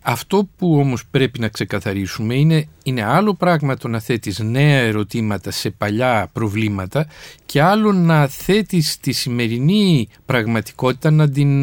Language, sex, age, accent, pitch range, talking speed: Greek, male, 50-69, native, 135-220 Hz, 140 wpm